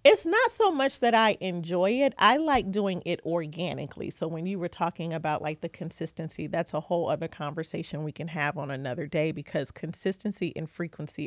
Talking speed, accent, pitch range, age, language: 195 wpm, American, 160-205 Hz, 40-59, English